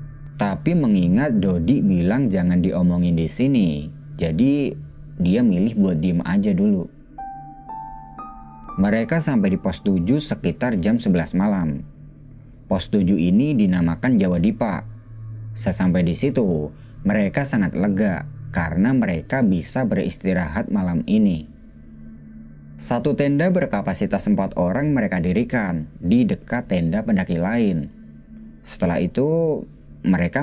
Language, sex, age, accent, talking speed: Indonesian, male, 30-49, native, 110 wpm